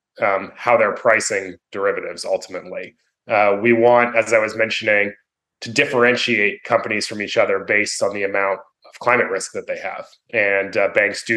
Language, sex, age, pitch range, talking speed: English, male, 30-49, 105-125 Hz, 175 wpm